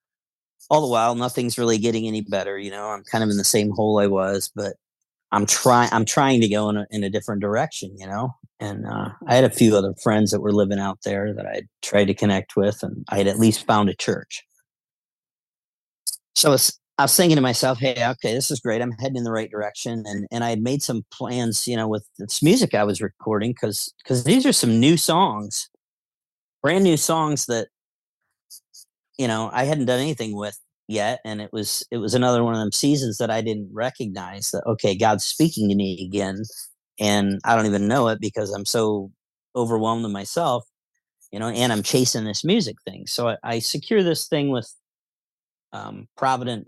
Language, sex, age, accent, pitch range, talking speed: English, male, 40-59, American, 105-125 Hz, 210 wpm